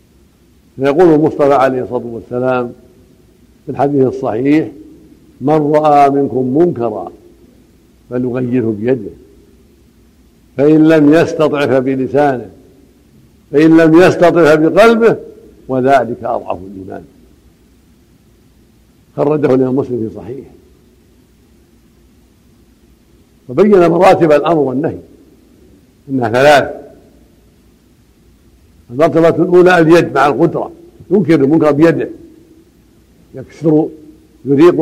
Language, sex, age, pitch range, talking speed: Arabic, male, 60-79, 125-165 Hz, 80 wpm